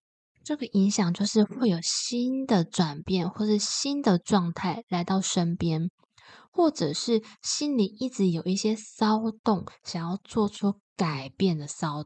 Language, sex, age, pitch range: Chinese, female, 20-39, 175-220 Hz